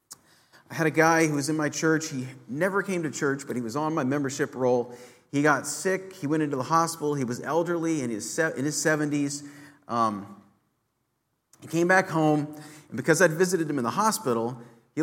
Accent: American